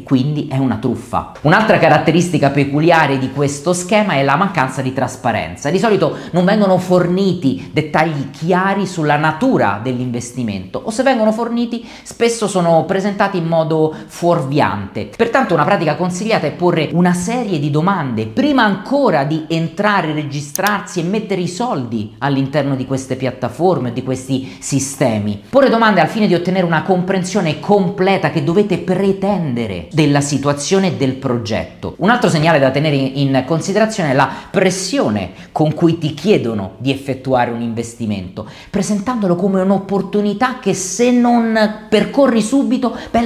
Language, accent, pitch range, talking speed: Italian, native, 135-200 Hz, 145 wpm